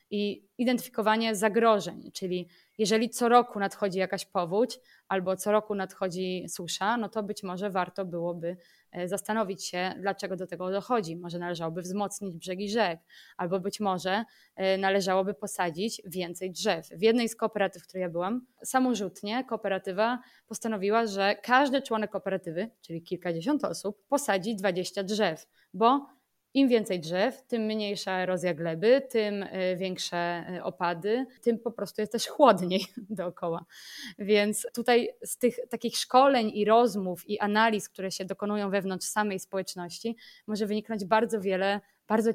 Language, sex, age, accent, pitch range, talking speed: Polish, female, 20-39, native, 190-230 Hz, 140 wpm